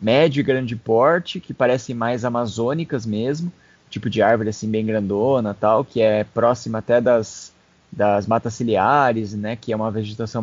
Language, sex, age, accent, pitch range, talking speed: Portuguese, male, 20-39, Brazilian, 115-145 Hz, 165 wpm